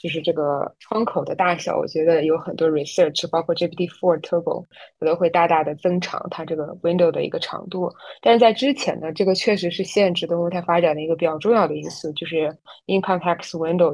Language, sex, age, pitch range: Chinese, female, 20-39, 160-195 Hz